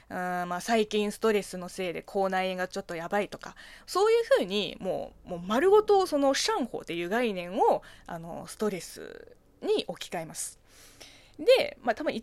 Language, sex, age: Japanese, female, 20-39